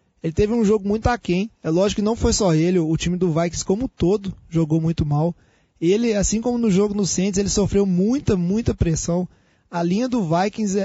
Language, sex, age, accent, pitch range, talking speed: Portuguese, male, 20-39, Brazilian, 175-210 Hz, 210 wpm